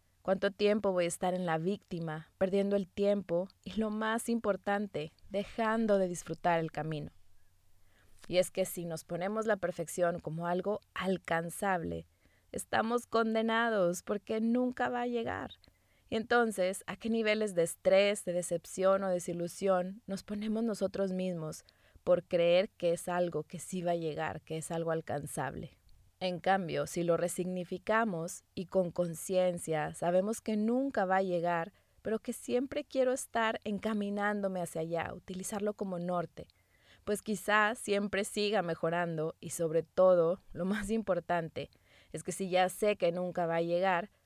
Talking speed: 155 wpm